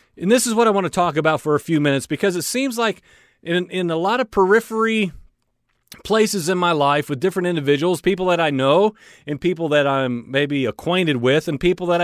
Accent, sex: American, male